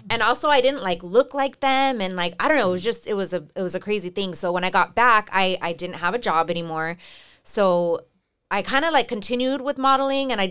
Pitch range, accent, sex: 170-225 Hz, American, female